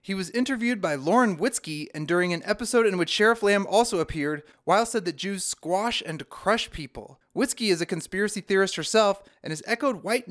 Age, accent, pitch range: 30-49, American, 160-210 Hz